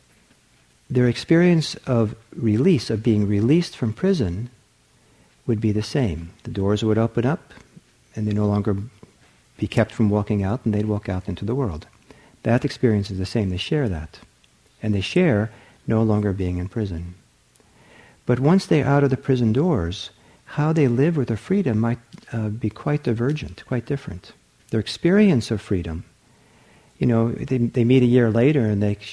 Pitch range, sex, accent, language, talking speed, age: 105-140 Hz, male, American, English, 175 wpm, 50-69